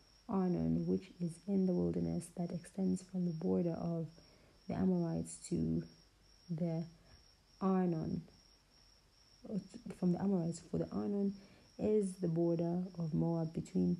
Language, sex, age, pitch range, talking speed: English, female, 30-49, 160-185 Hz, 125 wpm